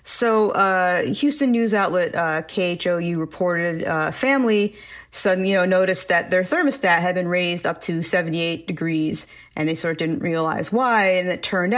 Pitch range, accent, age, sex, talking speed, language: 160-185 Hz, American, 40-59, female, 180 wpm, English